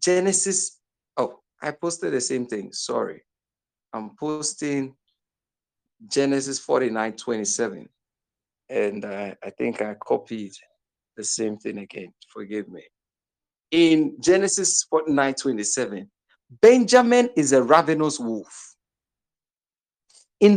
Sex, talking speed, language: male, 110 wpm, English